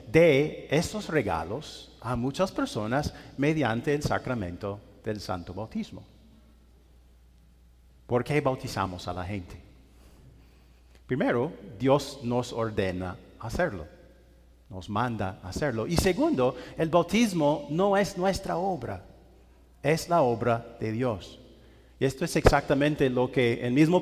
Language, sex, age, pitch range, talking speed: English, male, 40-59, 95-140 Hz, 115 wpm